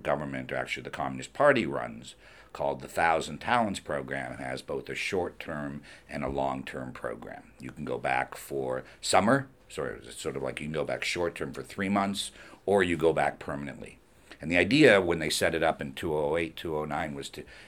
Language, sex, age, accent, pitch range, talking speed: English, male, 60-79, American, 70-100 Hz, 195 wpm